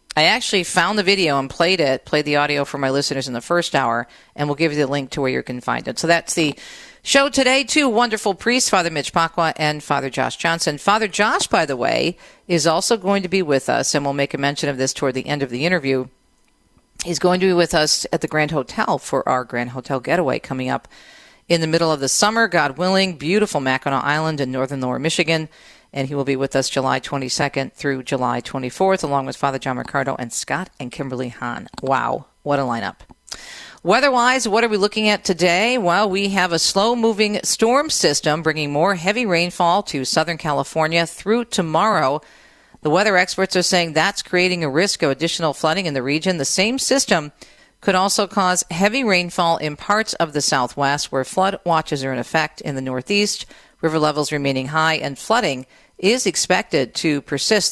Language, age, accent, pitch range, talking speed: English, 50-69, American, 140-195 Hz, 205 wpm